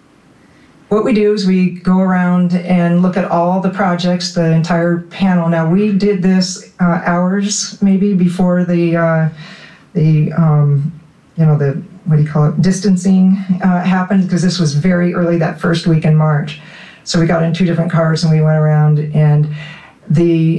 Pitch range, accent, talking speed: 150-185 Hz, American, 180 wpm